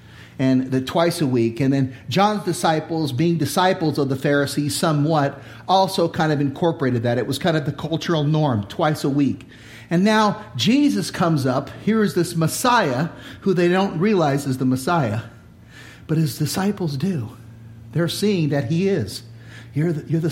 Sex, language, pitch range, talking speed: male, English, 150-220 Hz, 170 wpm